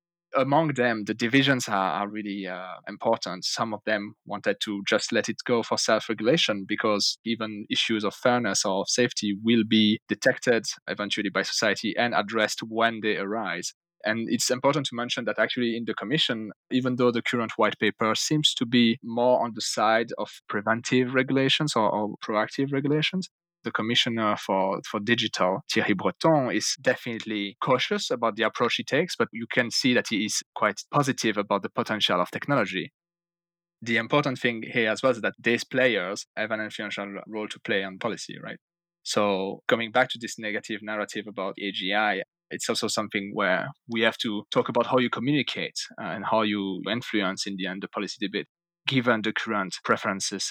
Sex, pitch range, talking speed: male, 100-125 Hz, 180 wpm